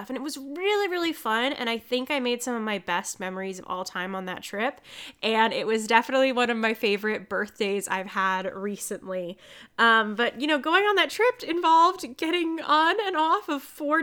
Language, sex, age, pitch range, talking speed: English, female, 10-29, 205-275 Hz, 210 wpm